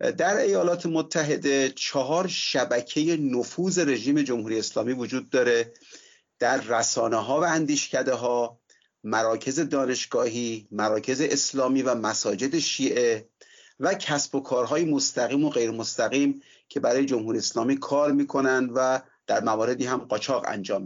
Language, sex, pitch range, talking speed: Persian, male, 125-170 Hz, 125 wpm